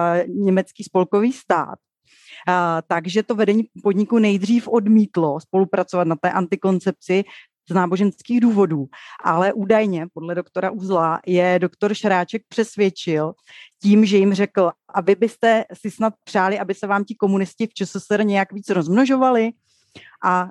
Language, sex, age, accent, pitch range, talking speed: Czech, female, 30-49, native, 175-205 Hz, 135 wpm